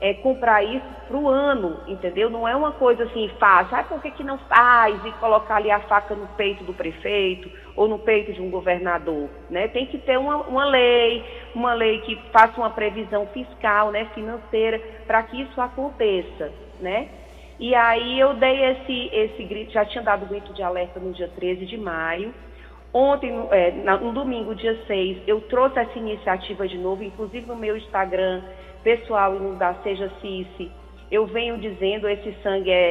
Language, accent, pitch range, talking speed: Portuguese, Brazilian, 185-235 Hz, 180 wpm